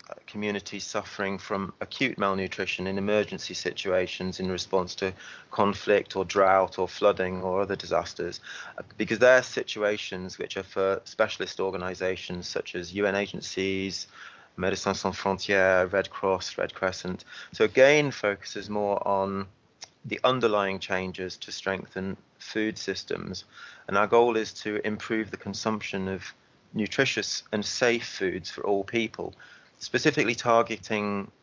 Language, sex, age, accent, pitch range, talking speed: English, male, 30-49, British, 95-105 Hz, 130 wpm